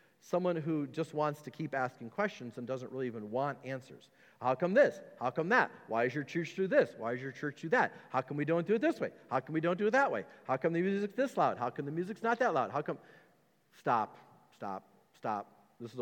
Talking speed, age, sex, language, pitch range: 255 wpm, 40-59, male, English, 130-205 Hz